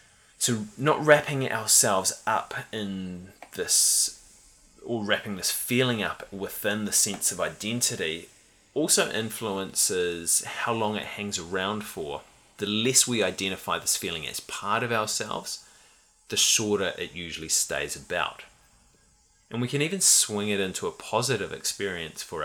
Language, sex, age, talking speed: English, male, 20-39, 140 wpm